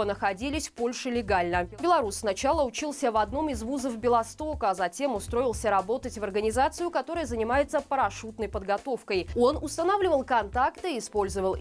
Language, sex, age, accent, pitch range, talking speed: Russian, female, 20-39, native, 200-275 Hz, 140 wpm